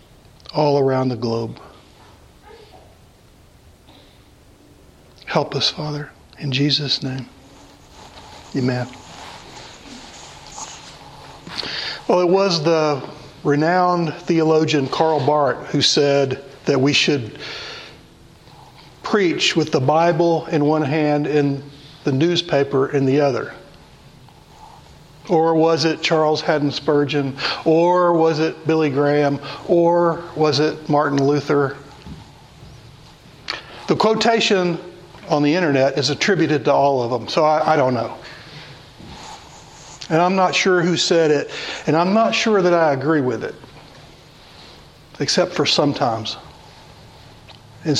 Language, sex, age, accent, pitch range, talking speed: English, male, 60-79, American, 140-165 Hz, 110 wpm